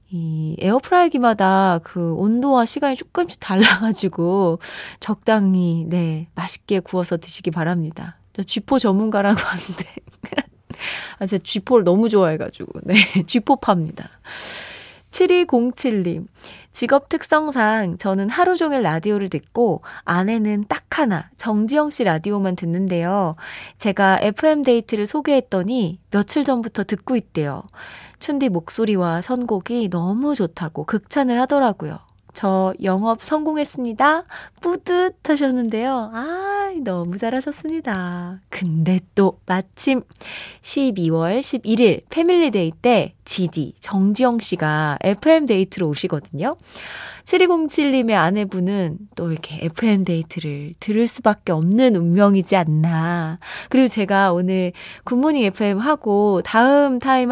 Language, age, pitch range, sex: Korean, 20-39, 180-260 Hz, female